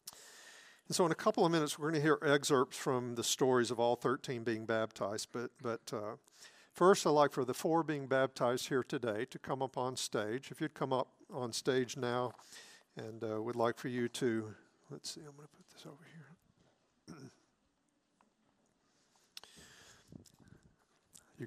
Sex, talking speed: male, 170 wpm